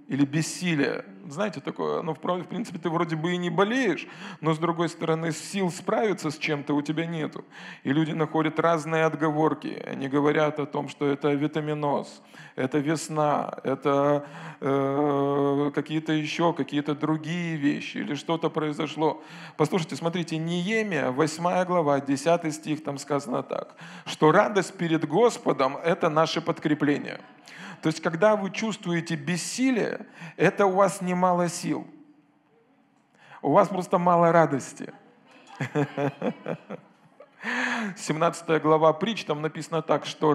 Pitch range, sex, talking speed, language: 150-185 Hz, male, 130 wpm, Russian